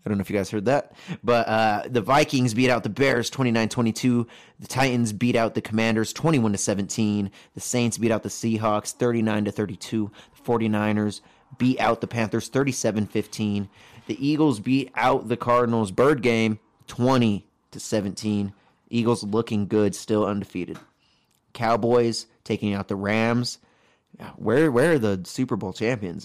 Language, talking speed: English, 150 wpm